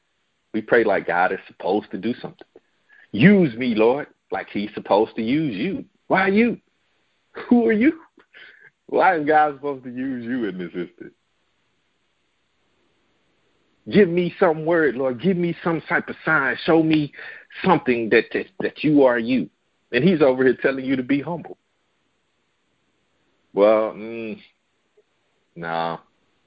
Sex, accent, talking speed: male, American, 145 wpm